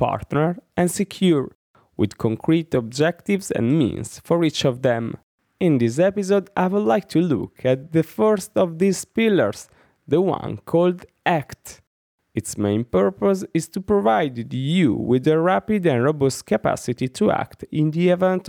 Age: 20-39